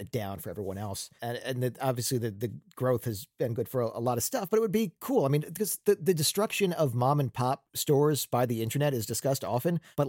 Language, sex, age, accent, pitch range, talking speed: English, male, 40-59, American, 110-145 Hz, 255 wpm